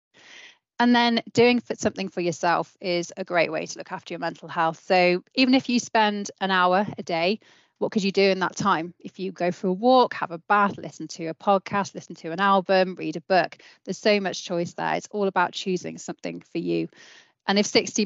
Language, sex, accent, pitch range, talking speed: English, female, British, 170-200 Hz, 225 wpm